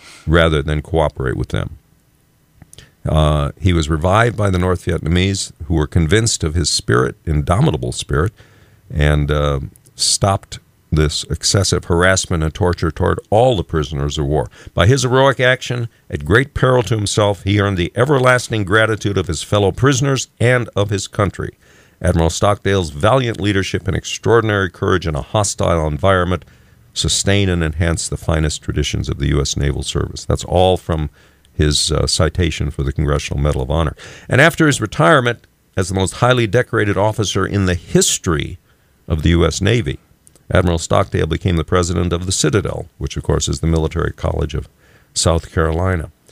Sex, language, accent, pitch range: male, English, American, 80-105 Hz